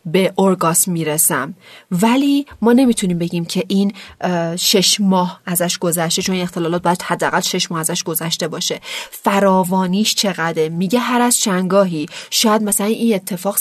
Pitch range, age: 170-215 Hz, 30-49